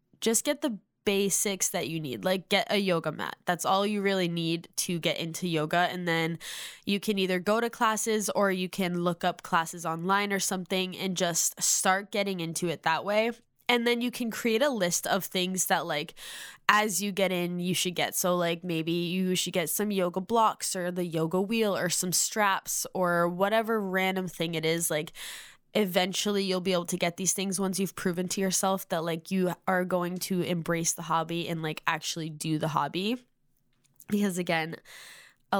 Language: English